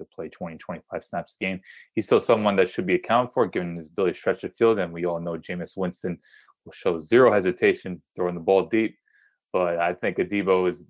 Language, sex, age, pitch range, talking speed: English, male, 20-39, 85-105 Hz, 225 wpm